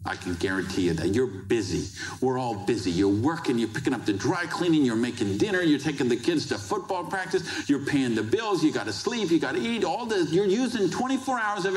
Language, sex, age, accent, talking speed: English, male, 50-69, American, 230 wpm